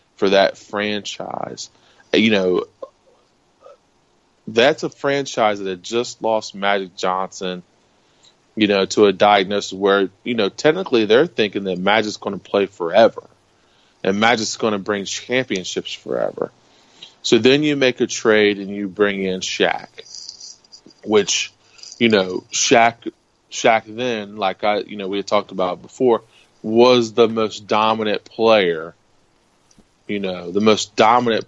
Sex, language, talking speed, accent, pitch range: male, English, 135 wpm, American, 95-110 Hz